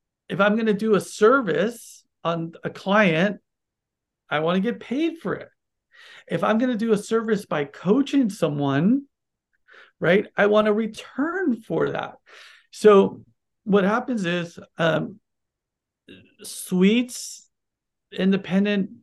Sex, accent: male, American